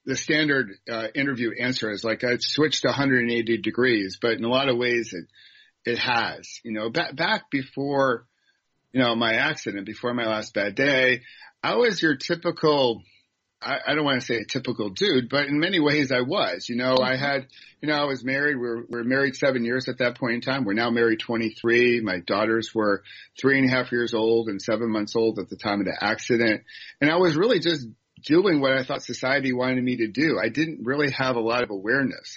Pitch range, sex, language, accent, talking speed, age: 115-140 Hz, male, English, American, 220 wpm, 40-59